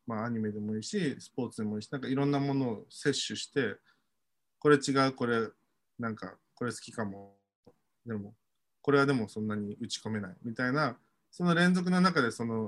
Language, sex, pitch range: Japanese, male, 110-155 Hz